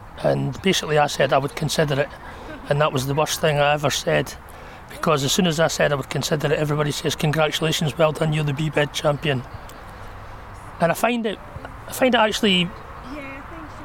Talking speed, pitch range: 195 wpm, 140-165 Hz